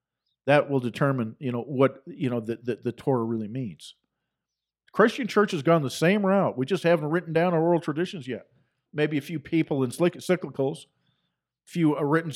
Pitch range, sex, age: 135-185 Hz, male, 50-69